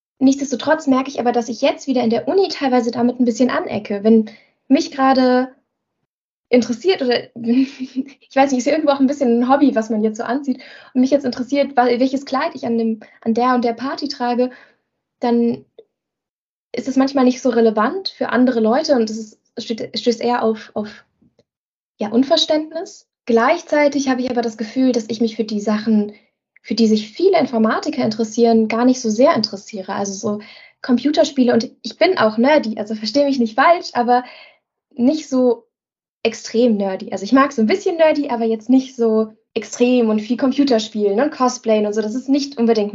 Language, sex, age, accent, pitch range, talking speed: German, female, 20-39, German, 230-270 Hz, 190 wpm